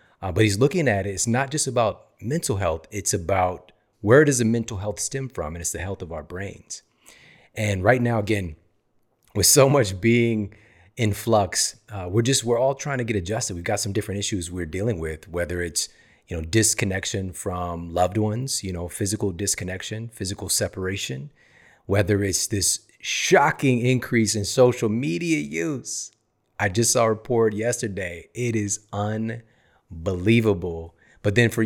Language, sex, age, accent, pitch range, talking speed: English, male, 30-49, American, 95-120 Hz, 175 wpm